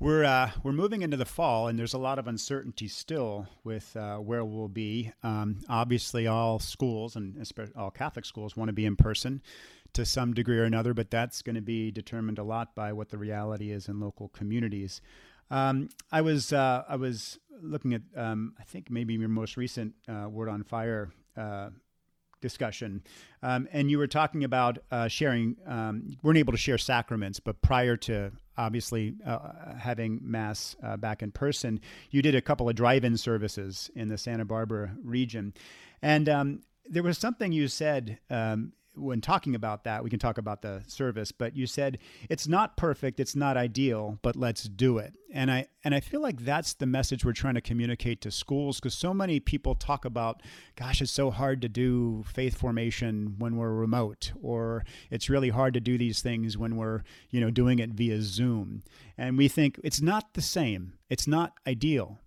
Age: 40-59